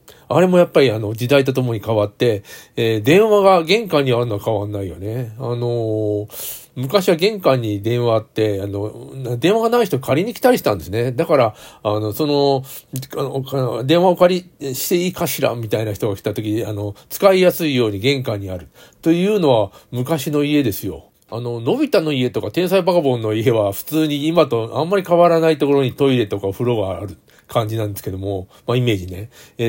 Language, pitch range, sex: Japanese, 105-150 Hz, male